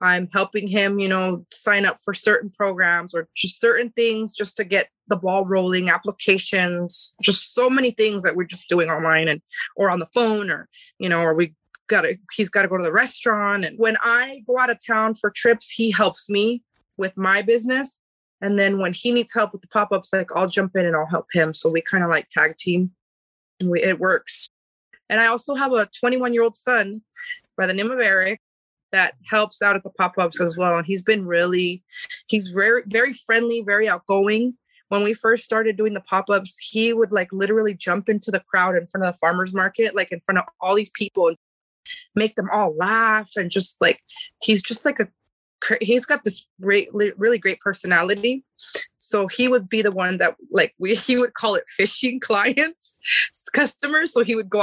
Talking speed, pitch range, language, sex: 210 wpm, 185-230 Hz, English, female